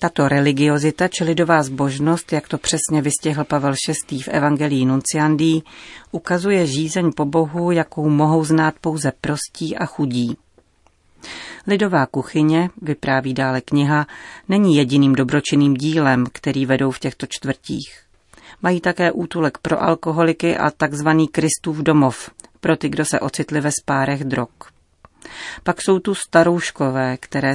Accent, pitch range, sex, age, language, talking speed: native, 140-160 Hz, female, 40-59, Czech, 135 wpm